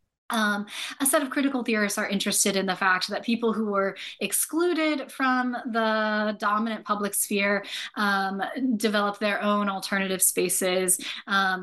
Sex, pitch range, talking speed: female, 190-230 Hz, 145 wpm